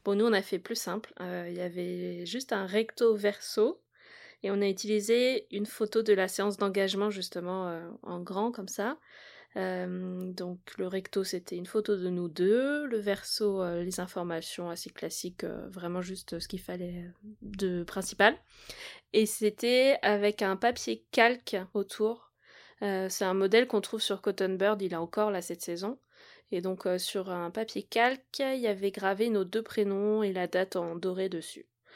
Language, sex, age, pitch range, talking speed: French, female, 20-39, 185-215 Hz, 185 wpm